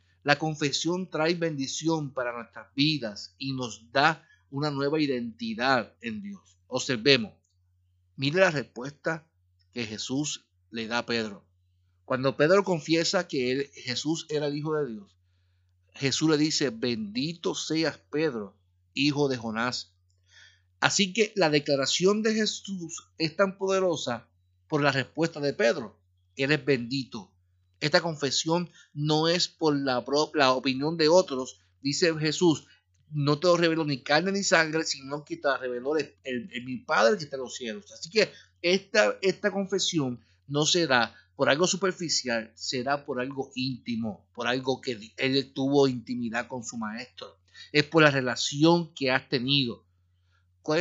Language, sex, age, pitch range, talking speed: Spanish, male, 50-69, 115-160 Hz, 150 wpm